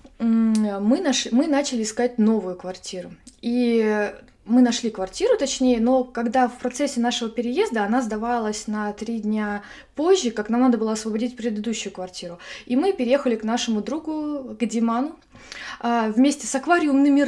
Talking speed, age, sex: 145 wpm, 20-39, female